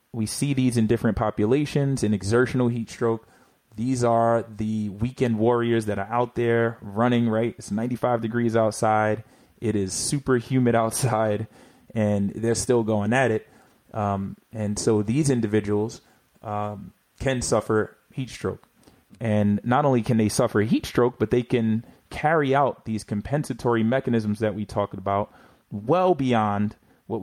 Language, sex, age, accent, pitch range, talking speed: English, male, 20-39, American, 105-120 Hz, 150 wpm